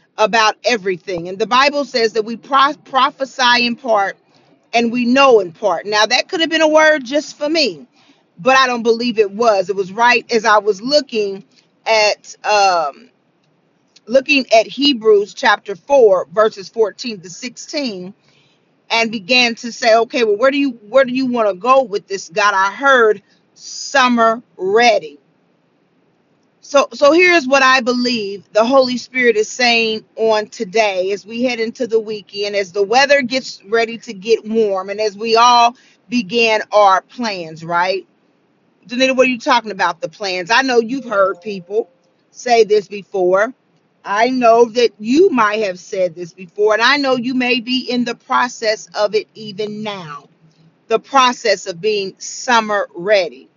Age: 40-59